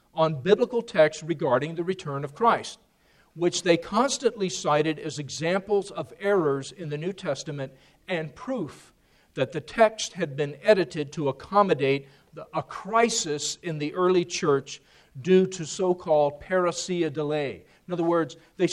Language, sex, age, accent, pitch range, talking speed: English, male, 40-59, American, 155-205 Hz, 145 wpm